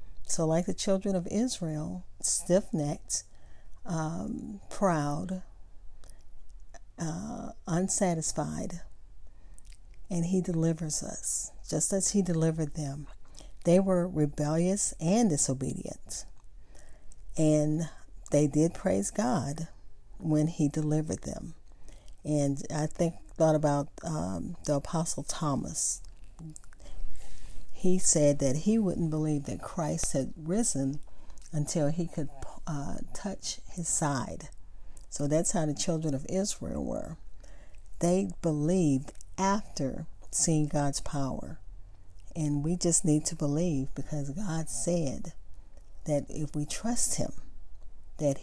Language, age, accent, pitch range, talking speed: English, 50-69, American, 135-175 Hz, 110 wpm